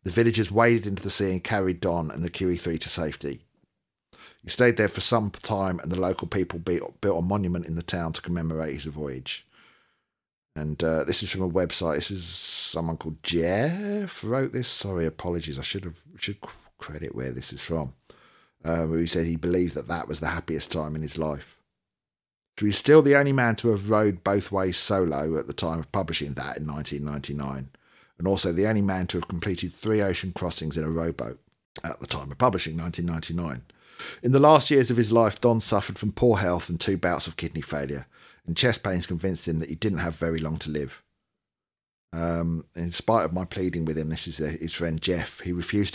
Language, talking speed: English, 210 wpm